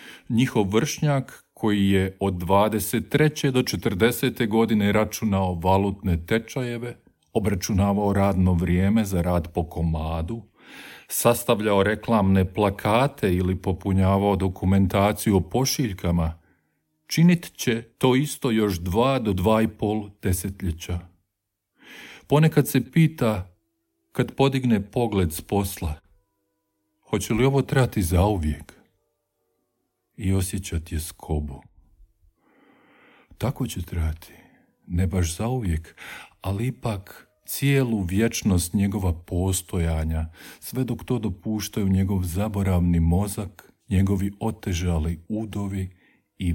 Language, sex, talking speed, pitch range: Croatian, male, 100 wpm, 90-115 Hz